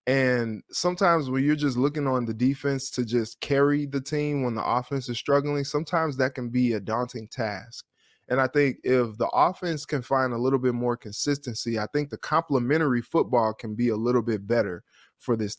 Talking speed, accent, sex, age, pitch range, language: 200 wpm, American, male, 20-39, 120-140 Hz, English